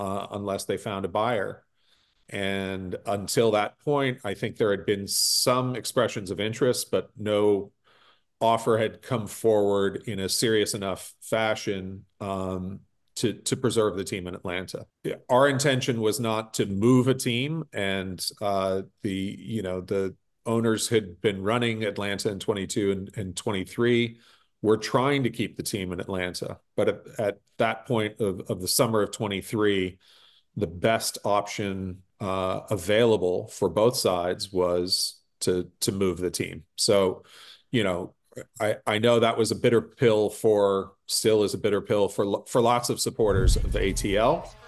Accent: American